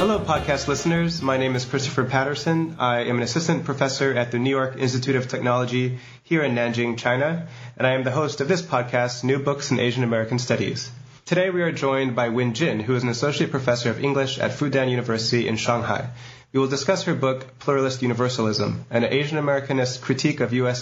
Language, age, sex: English, 30-49, male